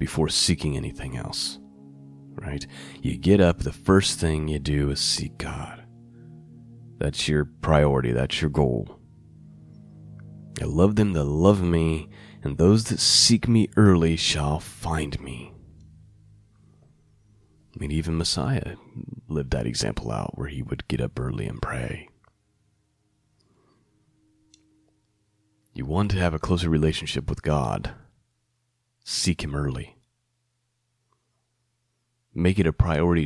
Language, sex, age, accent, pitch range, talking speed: English, male, 30-49, American, 75-115 Hz, 125 wpm